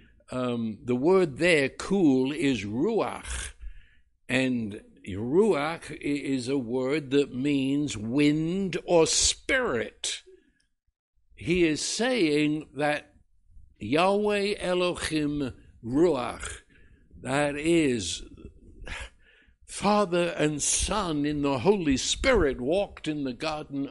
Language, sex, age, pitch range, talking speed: English, male, 60-79, 130-200 Hz, 95 wpm